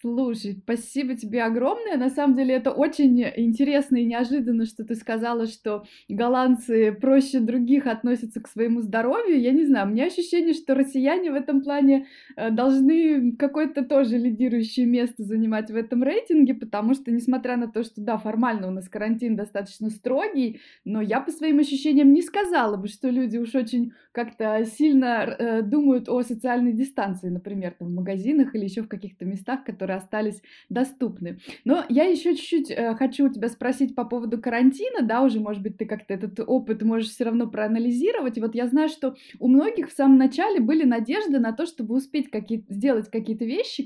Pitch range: 225-275 Hz